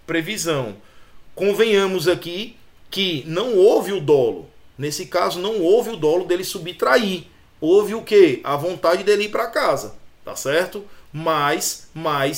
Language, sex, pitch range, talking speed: Portuguese, male, 150-220 Hz, 140 wpm